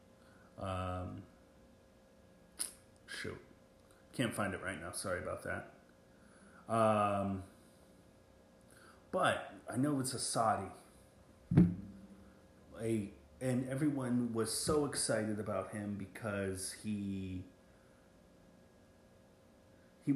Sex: male